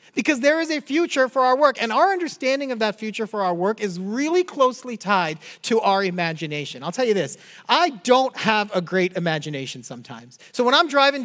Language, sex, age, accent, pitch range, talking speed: English, male, 40-59, American, 190-250 Hz, 210 wpm